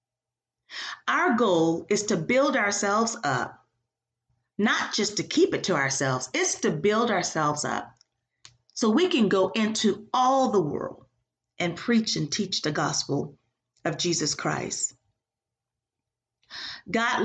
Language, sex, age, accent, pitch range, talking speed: English, female, 40-59, American, 150-225 Hz, 130 wpm